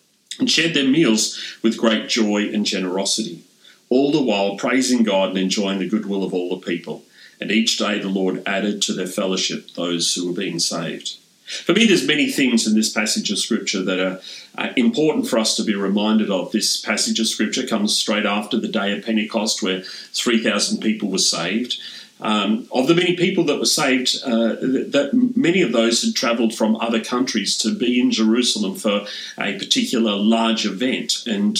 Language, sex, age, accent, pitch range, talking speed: English, male, 40-59, Australian, 110-140 Hz, 190 wpm